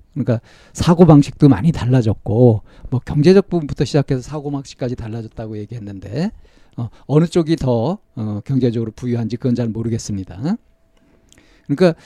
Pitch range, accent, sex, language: 125-180 Hz, native, male, Korean